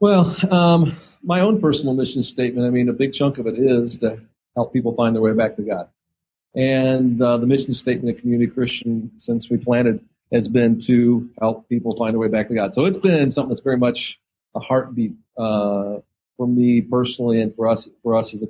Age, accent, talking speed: 50-69, American, 215 wpm